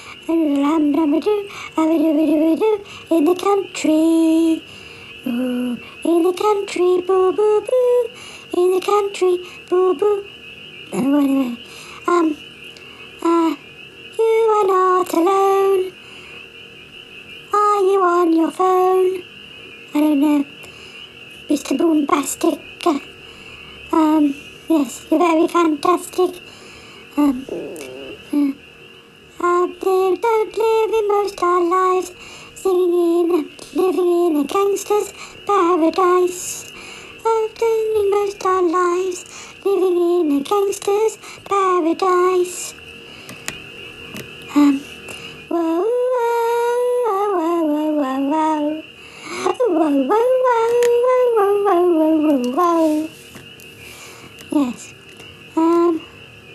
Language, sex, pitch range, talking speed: English, male, 320-405 Hz, 80 wpm